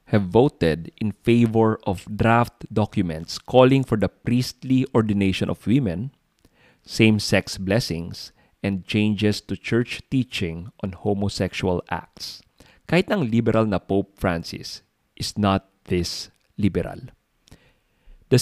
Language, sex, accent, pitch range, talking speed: English, male, Filipino, 95-110 Hz, 115 wpm